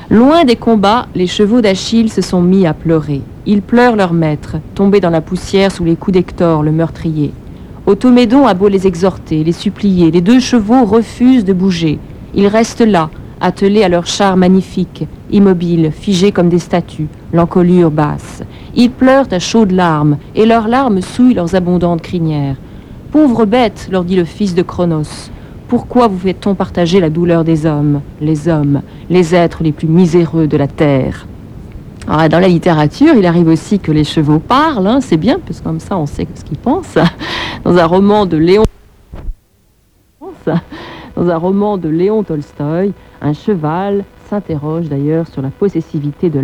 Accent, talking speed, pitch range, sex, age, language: French, 170 wpm, 160-210 Hz, female, 50-69, French